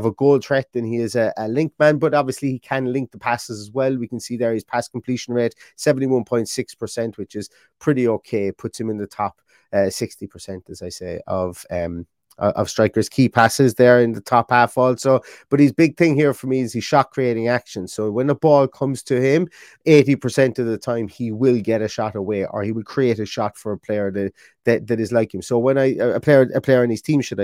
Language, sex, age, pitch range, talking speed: English, male, 30-49, 105-135 Hz, 245 wpm